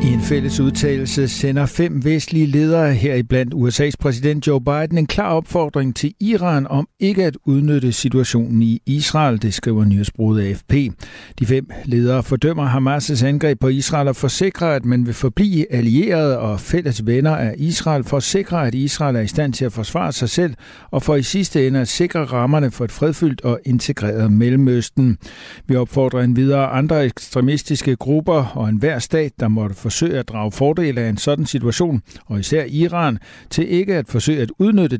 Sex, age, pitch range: male, 60-79, 120-150 Hz